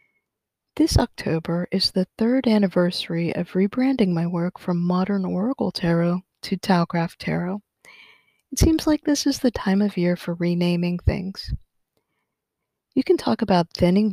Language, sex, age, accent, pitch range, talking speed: English, female, 40-59, American, 175-235 Hz, 145 wpm